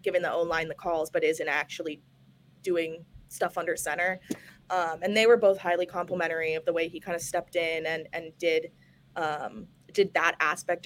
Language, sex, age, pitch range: English, female, 20-39, 170-195 Hz